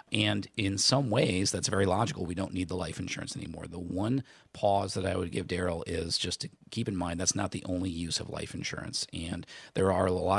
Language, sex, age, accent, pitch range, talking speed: English, male, 40-59, American, 90-105 Hz, 235 wpm